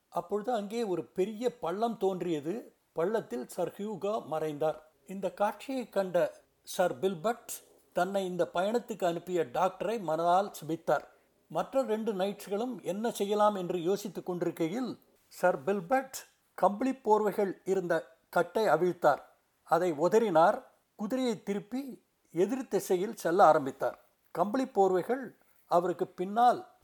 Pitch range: 175-230 Hz